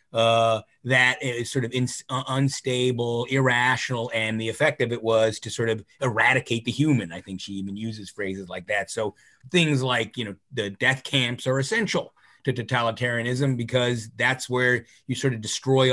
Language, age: English, 30-49